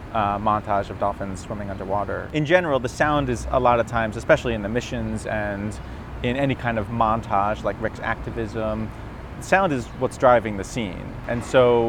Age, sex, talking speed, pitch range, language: 30-49, male, 180 wpm, 105-125 Hz, English